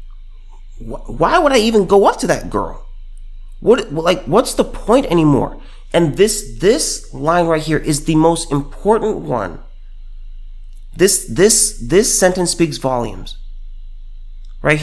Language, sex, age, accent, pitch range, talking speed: English, male, 30-49, American, 120-195 Hz, 135 wpm